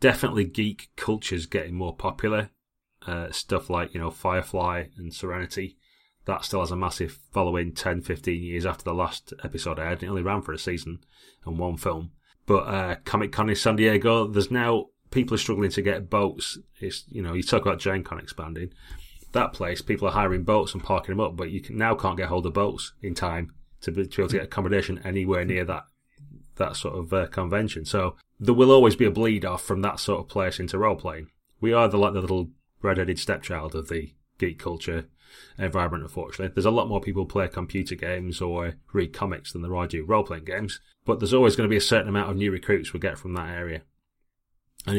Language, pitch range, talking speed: English, 85-100 Hz, 220 wpm